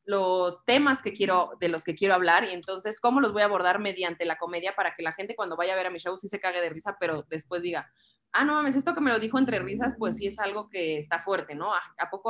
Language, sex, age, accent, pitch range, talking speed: Spanish, female, 20-39, Mexican, 190-245 Hz, 285 wpm